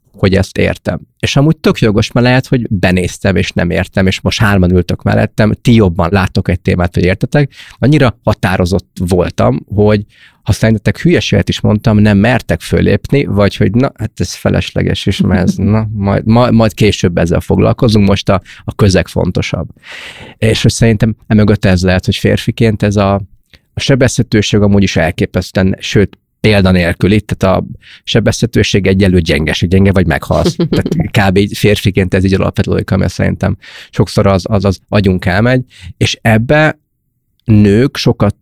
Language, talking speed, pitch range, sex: Hungarian, 155 wpm, 95-110 Hz, male